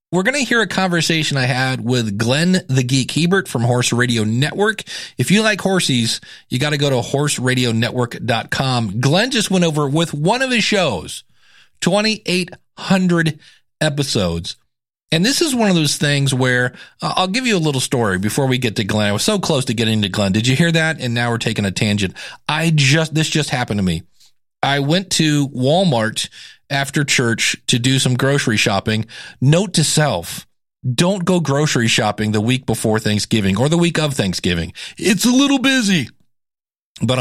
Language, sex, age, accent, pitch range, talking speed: English, male, 40-59, American, 115-165 Hz, 185 wpm